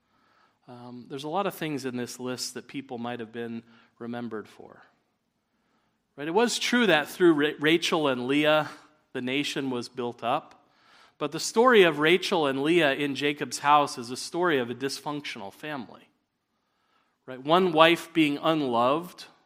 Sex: male